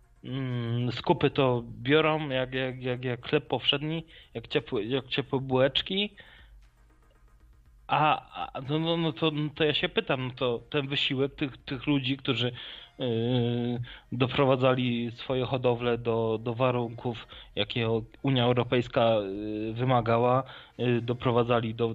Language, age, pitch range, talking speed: Polish, 20-39, 115-140 Hz, 125 wpm